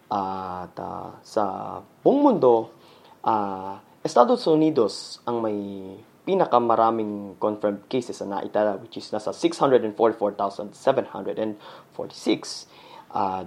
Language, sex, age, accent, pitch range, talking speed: Filipino, male, 20-39, native, 105-125 Hz, 85 wpm